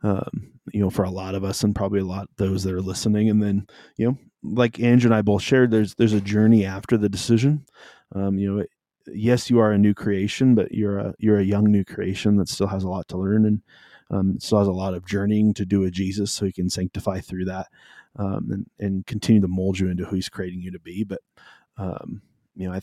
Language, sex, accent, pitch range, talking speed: English, male, American, 95-110 Hz, 250 wpm